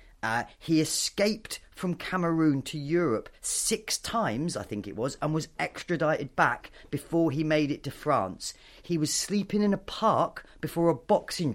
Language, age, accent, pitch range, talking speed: English, 30-49, British, 125-175 Hz, 165 wpm